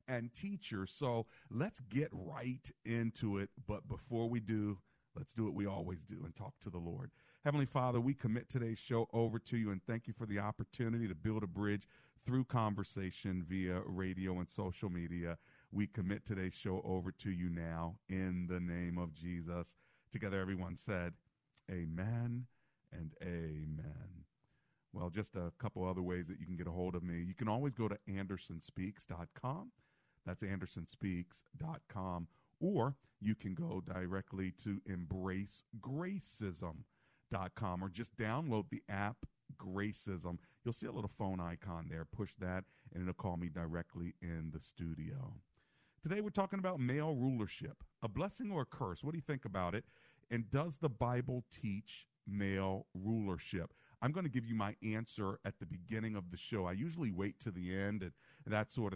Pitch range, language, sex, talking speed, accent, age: 90-120 Hz, English, male, 170 wpm, American, 40-59